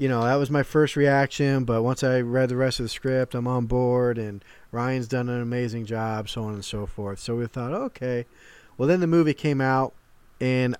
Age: 20-39